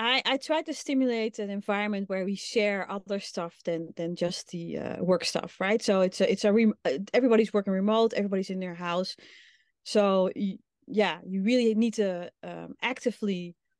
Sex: female